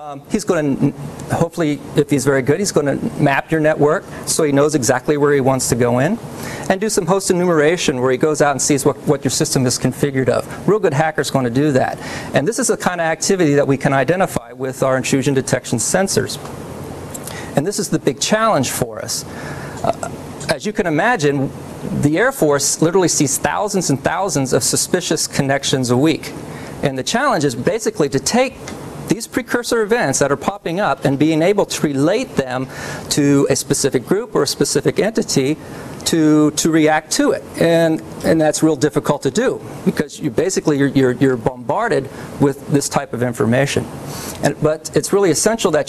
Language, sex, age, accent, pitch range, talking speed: English, male, 40-59, American, 135-160 Hz, 195 wpm